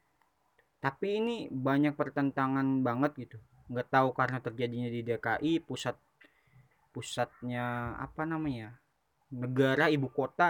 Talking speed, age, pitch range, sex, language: 105 wpm, 20-39, 125-150 Hz, male, Indonesian